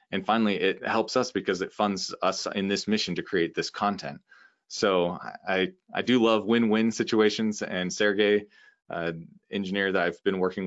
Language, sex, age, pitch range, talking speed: English, male, 20-39, 90-105 Hz, 180 wpm